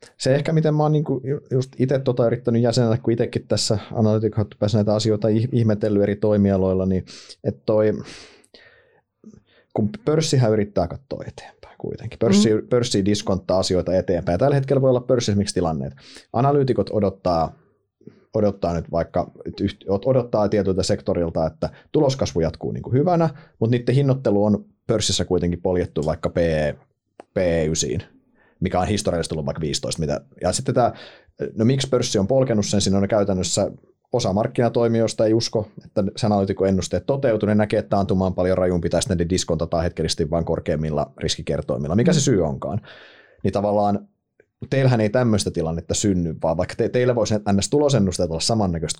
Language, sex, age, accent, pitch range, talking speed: Finnish, male, 30-49, native, 95-120 Hz, 150 wpm